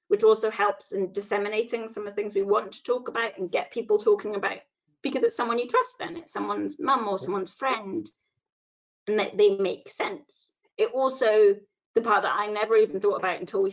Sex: female